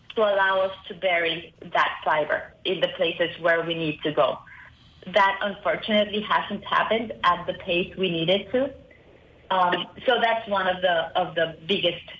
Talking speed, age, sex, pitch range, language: 165 wpm, 30-49, female, 165-205 Hz, English